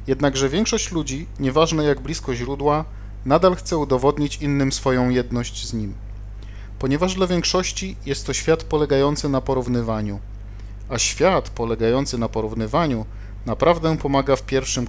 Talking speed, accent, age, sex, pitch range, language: 135 wpm, native, 40-59, male, 105-140 Hz, Polish